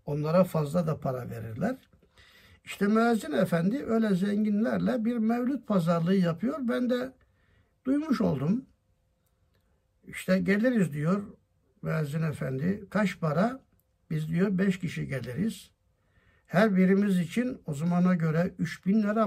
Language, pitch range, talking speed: Turkish, 150-220 Hz, 120 wpm